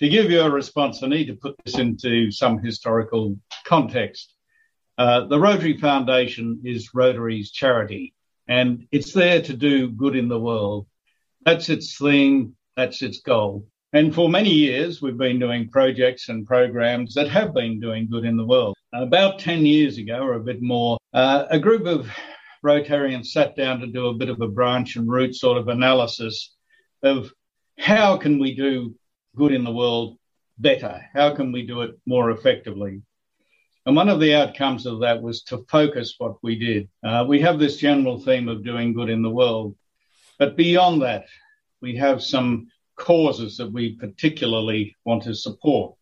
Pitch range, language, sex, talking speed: 115-145 Hz, English, male, 175 wpm